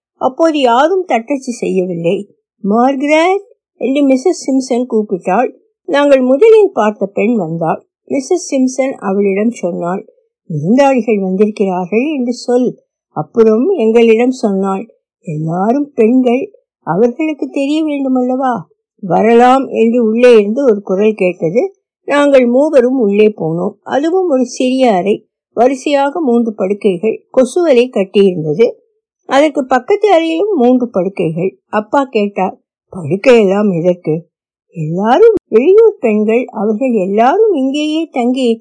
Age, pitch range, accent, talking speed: 60-79, 210-290 Hz, native, 45 wpm